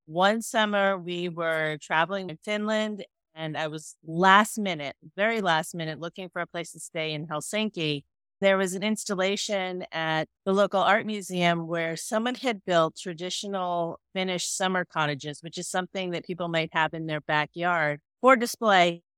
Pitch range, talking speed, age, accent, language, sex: 160-200 Hz, 165 wpm, 30-49, American, English, female